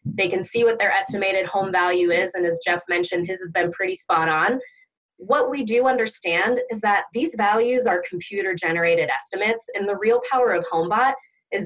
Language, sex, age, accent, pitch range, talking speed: English, female, 20-39, American, 175-235 Hz, 190 wpm